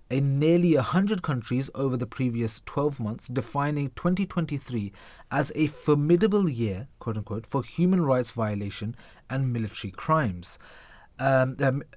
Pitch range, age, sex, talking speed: 115-155 Hz, 30-49, male, 130 wpm